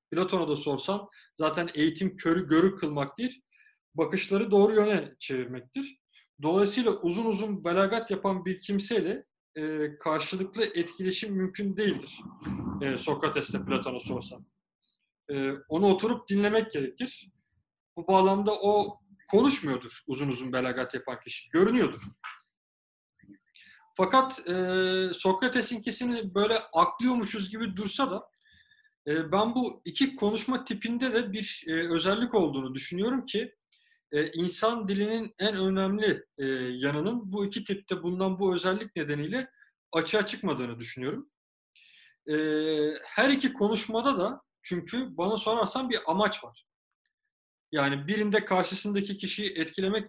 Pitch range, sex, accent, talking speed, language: 160-225 Hz, male, native, 110 wpm, Turkish